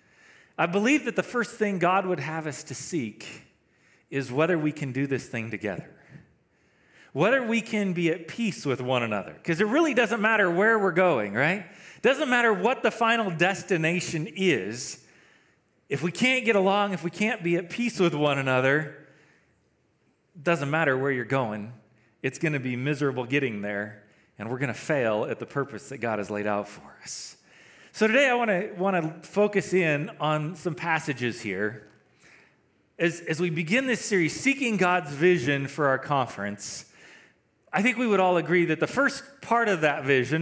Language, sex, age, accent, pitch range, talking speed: English, male, 40-59, American, 135-195 Hz, 185 wpm